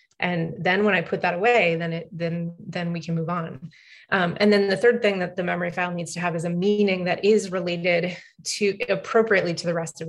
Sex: female